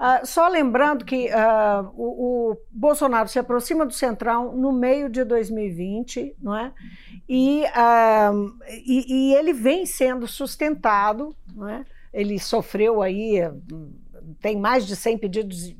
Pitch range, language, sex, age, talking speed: 205-255 Hz, Portuguese, female, 50-69, 135 wpm